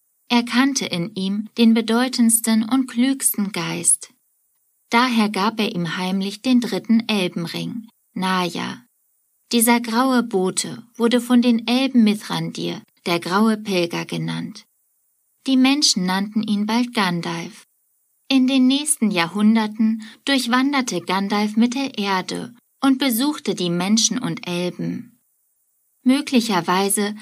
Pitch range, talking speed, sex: 190-245 Hz, 115 wpm, female